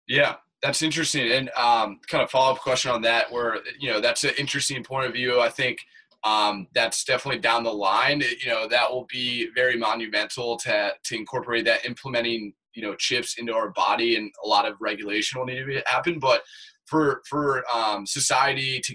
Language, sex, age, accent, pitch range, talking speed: English, male, 20-39, American, 115-135 Hz, 195 wpm